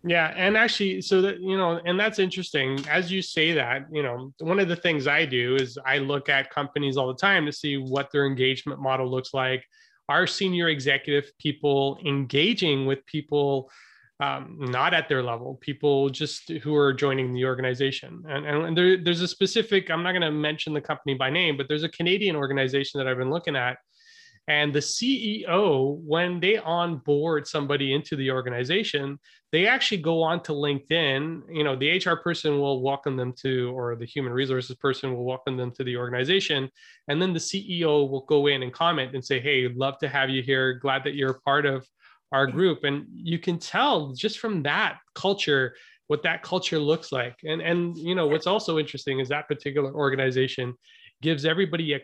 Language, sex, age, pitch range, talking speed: English, male, 20-39, 135-170 Hz, 195 wpm